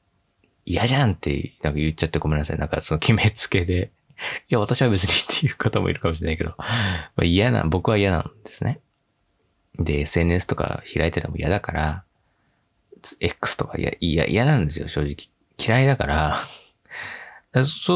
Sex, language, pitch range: male, Japanese, 80-110 Hz